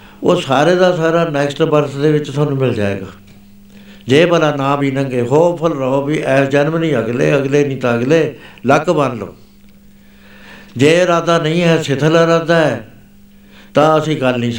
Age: 60-79